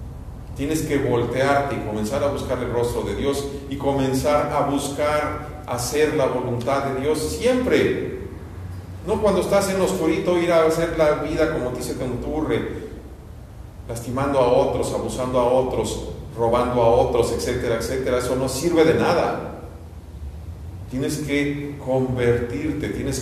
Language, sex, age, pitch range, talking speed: Spanish, male, 50-69, 90-135 Hz, 140 wpm